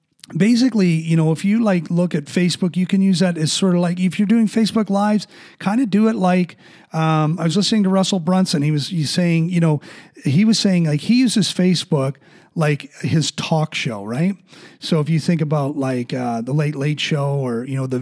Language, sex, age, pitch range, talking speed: English, male, 30-49, 145-180 Hz, 220 wpm